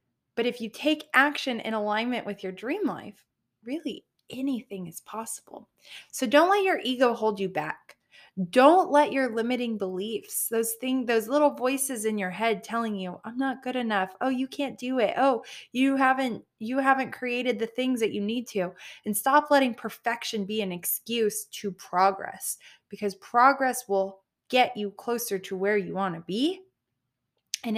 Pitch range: 200-265 Hz